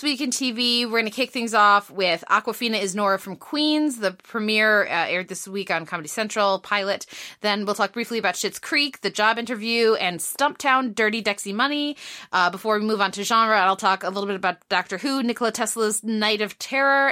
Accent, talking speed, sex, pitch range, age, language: American, 210 wpm, female, 185-235 Hz, 20-39, English